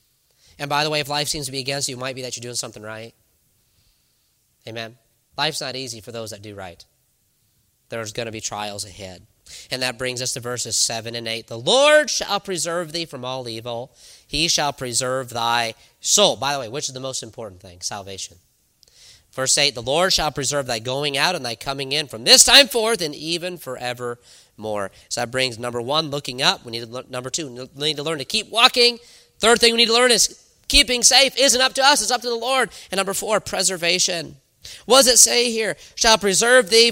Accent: American